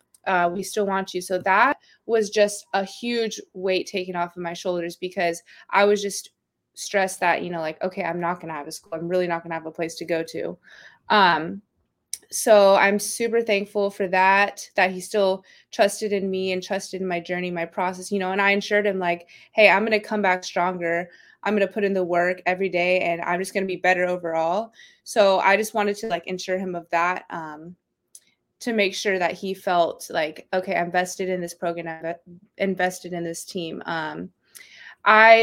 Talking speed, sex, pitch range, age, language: 215 wpm, female, 175-205 Hz, 20-39, English